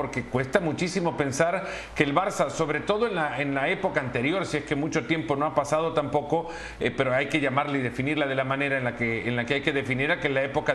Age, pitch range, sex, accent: 50-69, 145-180 Hz, male, Mexican